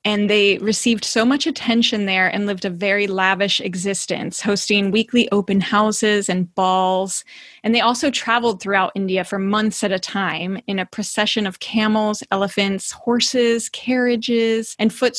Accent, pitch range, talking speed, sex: American, 195-230 Hz, 160 wpm, female